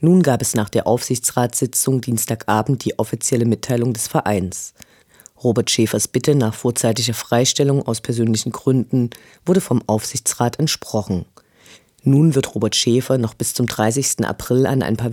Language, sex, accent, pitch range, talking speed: German, female, German, 110-135 Hz, 145 wpm